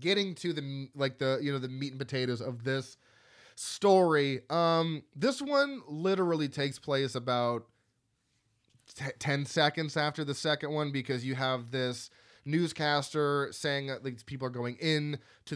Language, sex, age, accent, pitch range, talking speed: English, male, 20-39, American, 125-155 Hz, 160 wpm